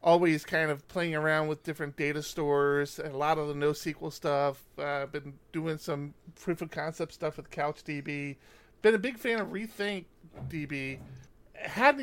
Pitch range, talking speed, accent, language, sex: 145-175 Hz, 165 wpm, American, English, male